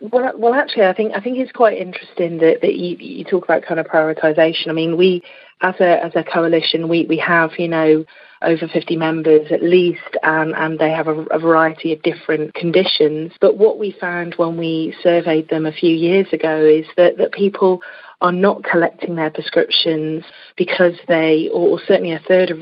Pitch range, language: 160-195 Hz, English